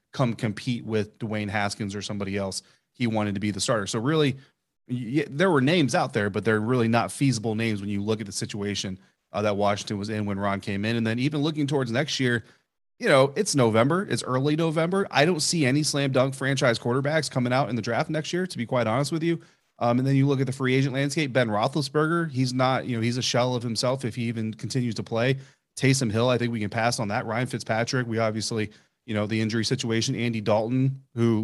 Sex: male